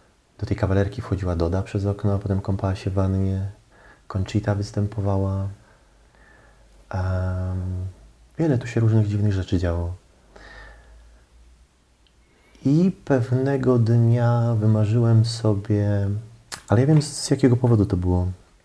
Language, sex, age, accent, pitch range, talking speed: Polish, male, 30-49, native, 95-115 Hz, 115 wpm